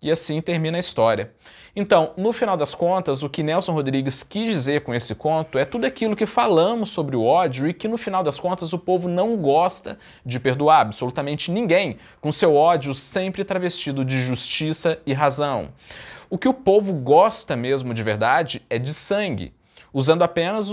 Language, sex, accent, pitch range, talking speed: Portuguese, male, Brazilian, 130-180 Hz, 180 wpm